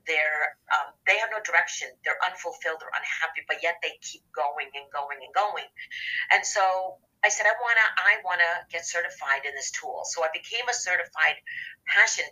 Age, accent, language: 40-59, American, English